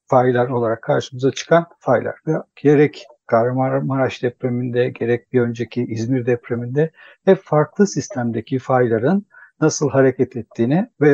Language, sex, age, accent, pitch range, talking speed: Turkish, male, 60-79, native, 125-155 Hz, 120 wpm